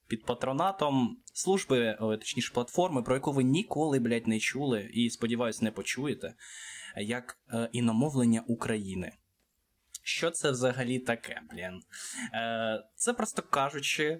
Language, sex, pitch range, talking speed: Ukrainian, male, 110-140 Hz, 115 wpm